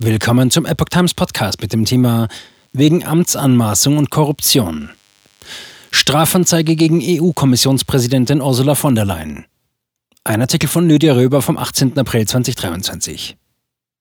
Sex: male